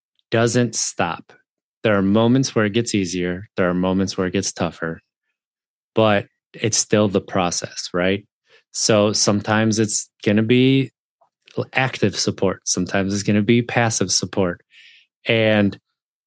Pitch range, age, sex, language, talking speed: 95-115 Hz, 20-39, male, English, 140 wpm